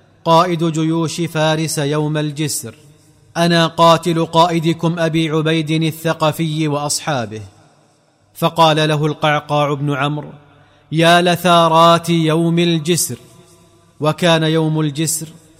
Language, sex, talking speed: Arabic, male, 90 wpm